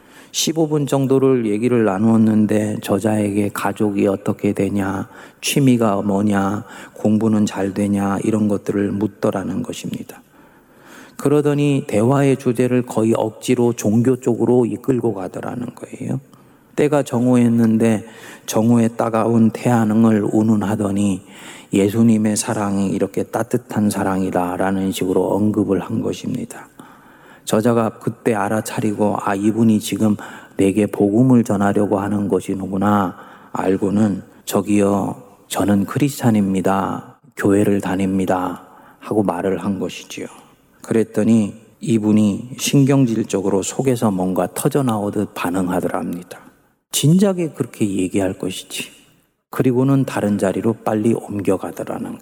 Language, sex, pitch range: Korean, male, 100-120 Hz